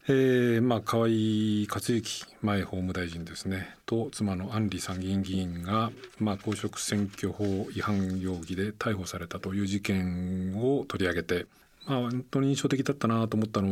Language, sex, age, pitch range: Japanese, male, 40-59, 95-115 Hz